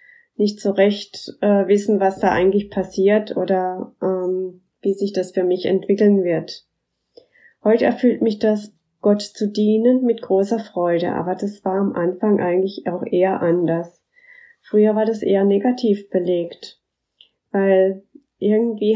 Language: German